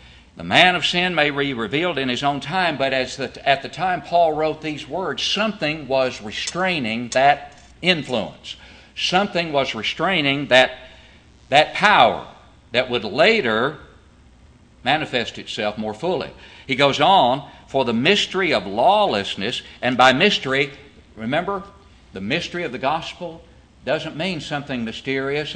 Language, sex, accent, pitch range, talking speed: English, male, American, 130-170 Hz, 140 wpm